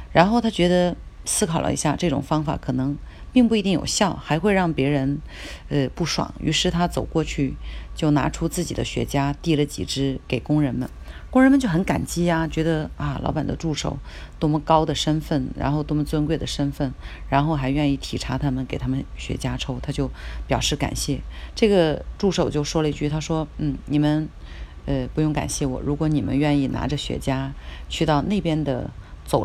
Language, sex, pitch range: Chinese, female, 130-160 Hz